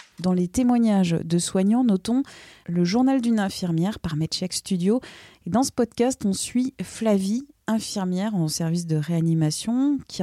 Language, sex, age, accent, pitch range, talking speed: French, female, 30-49, French, 165-215 Hz, 155 wpm